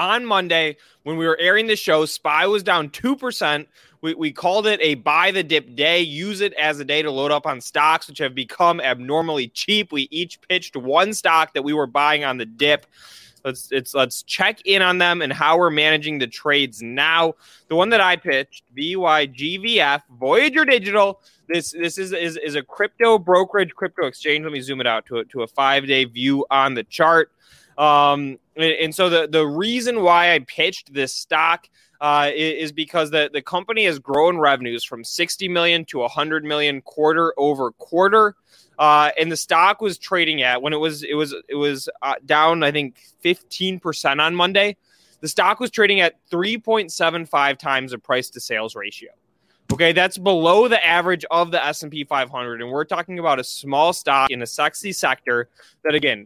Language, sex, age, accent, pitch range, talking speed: English, male, 20-39, American, 140-180 Hz, 195 wpm